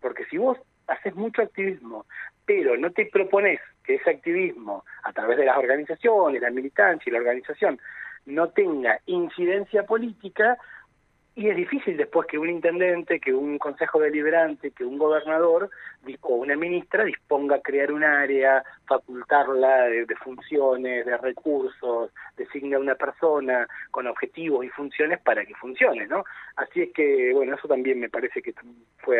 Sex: male